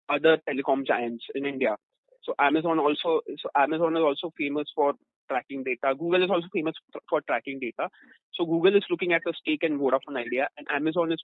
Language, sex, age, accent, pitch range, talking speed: English, male, 30-49, Indian, 145-185 Hz, 190 wpm